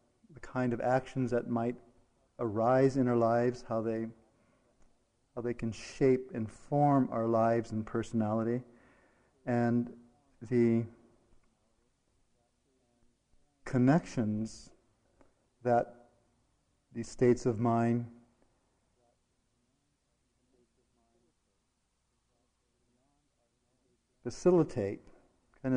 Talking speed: 70 wpm